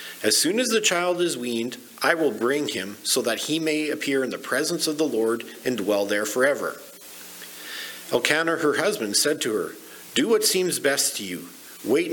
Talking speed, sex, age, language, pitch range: 195 wpm, male, 50-69, English, 110-165 Hz